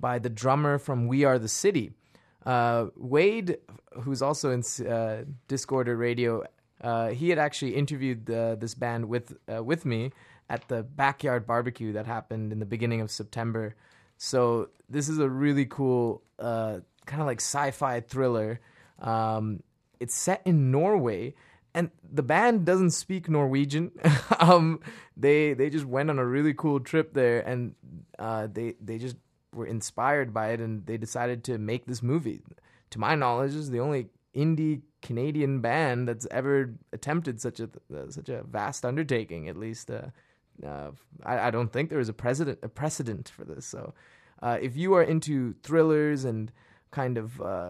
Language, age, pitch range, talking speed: English, 20-39, 115-145 Hz, 170 wpm